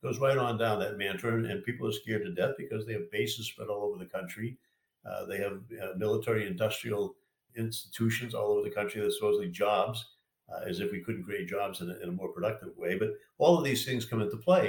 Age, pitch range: 50-69, 105-130 Hz